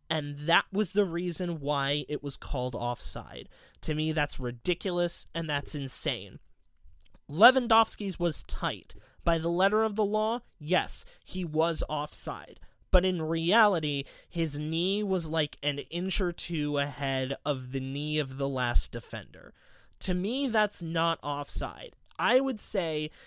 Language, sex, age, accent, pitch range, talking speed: English, male, 20-39, American, 140-190 Hz, 145 wpm